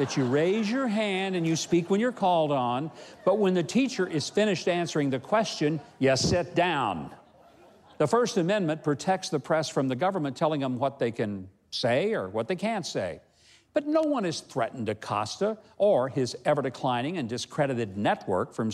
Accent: American